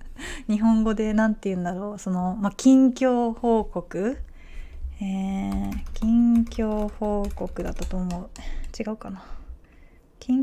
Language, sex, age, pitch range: Japanese, female, 20-39, 130-215 Hz